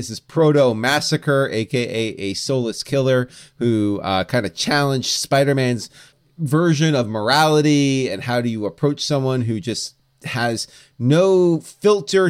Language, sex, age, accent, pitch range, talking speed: English, male, 30-49, American, 110-145 Hz, 135 wpm